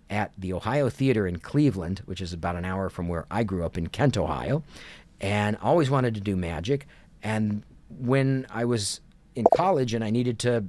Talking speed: 195 wpm